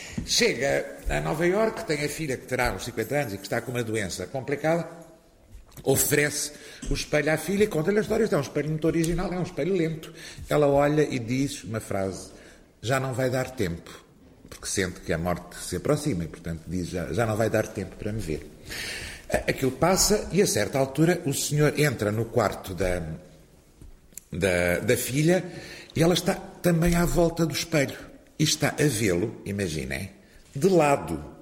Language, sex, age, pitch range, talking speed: Portuguese, male, 50-69, 100-160 Hz, 180 wpm